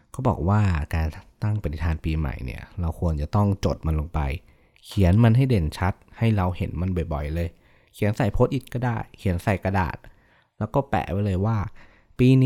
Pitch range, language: 85-110 Hz, Thai